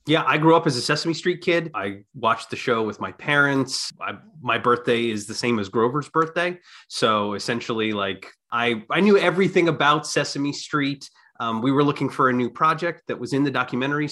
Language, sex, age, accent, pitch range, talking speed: English, male, 30-49, American, 110-150 Hz, 205 wpm